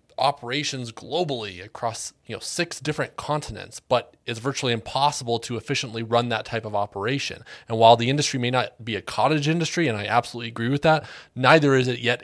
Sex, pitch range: male, 110-135 Hz